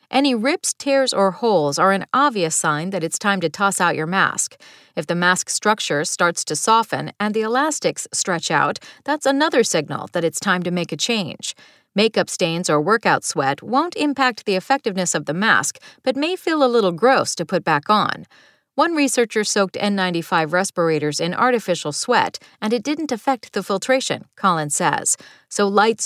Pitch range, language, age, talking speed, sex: 175-255 Hz, English, 40-59, 180 wpm, female